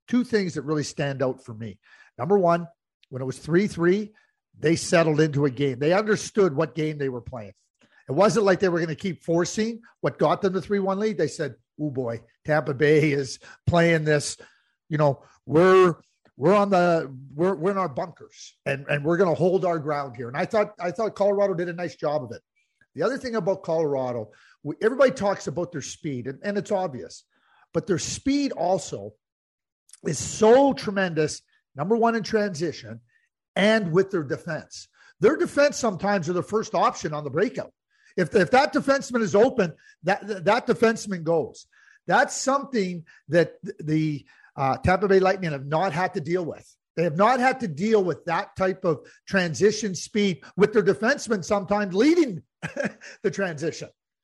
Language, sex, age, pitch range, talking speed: English, male, 50-69, 150-205 Hz, 185 wpm